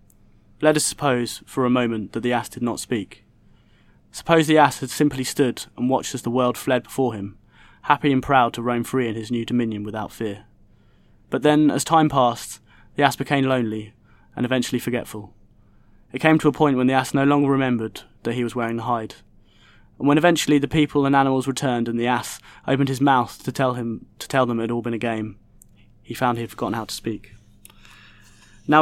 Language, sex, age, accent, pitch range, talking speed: English, male, 20-39, British, 110-130 Hz, 210 wpm